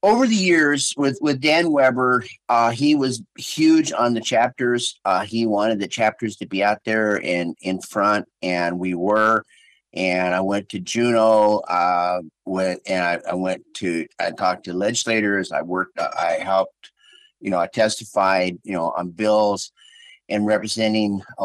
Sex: male